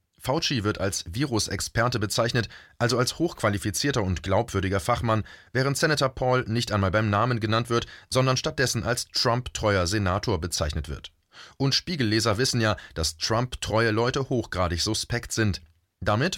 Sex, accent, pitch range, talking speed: male, German, 95-125 Hz, 140 wpm